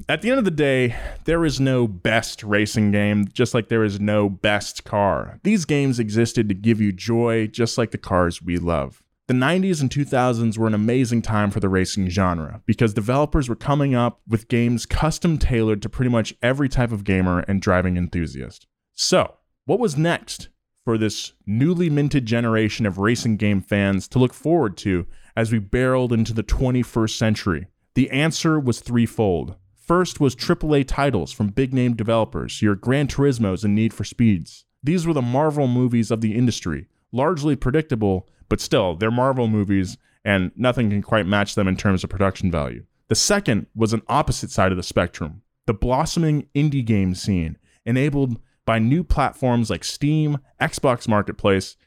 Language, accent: English, American